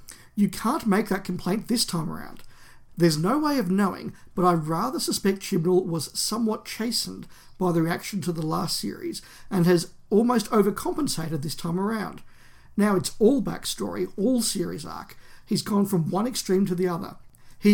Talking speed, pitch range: 175 wpm, 175-220 Hz